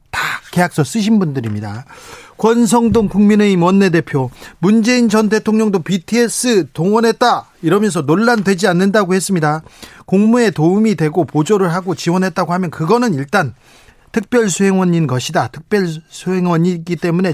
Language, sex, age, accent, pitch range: Korean, male, 40-59, native, 150-210 Hz